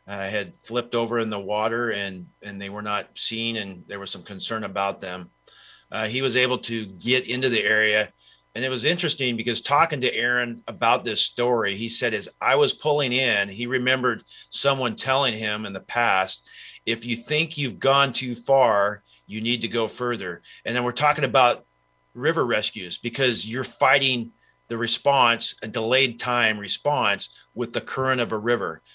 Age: 40-59